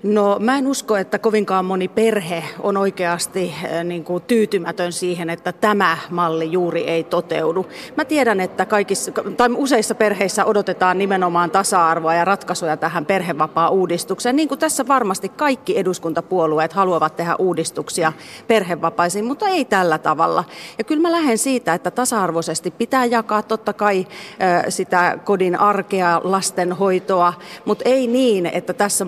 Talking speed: 140 wpm